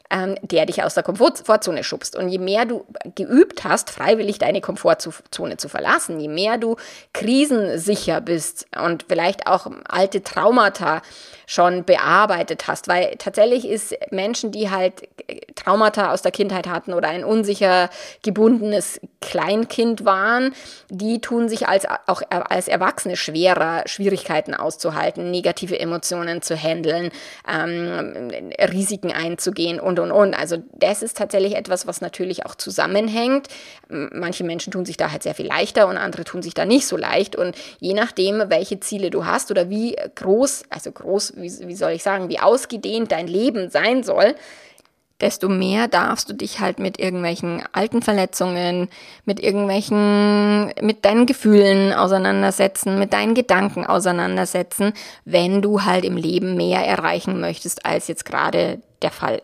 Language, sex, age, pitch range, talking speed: German, female, 20-39, 180-215 Hz, 150 wpm